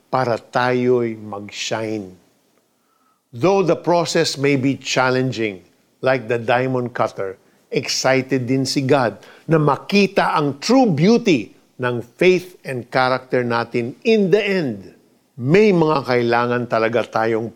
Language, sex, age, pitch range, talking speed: Filipino, male, 50-69, 120-160 Hz, 120 wpm